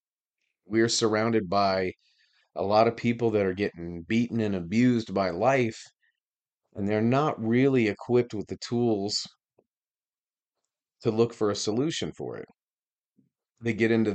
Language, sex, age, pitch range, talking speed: English, male, 40-59, 90-110 Hz, 140 wpm